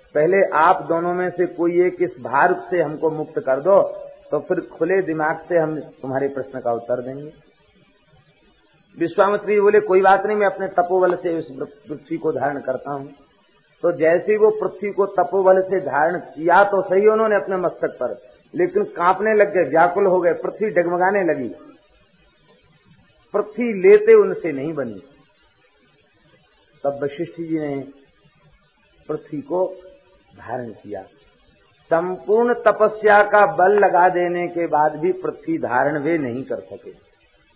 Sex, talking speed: male, 150 wpm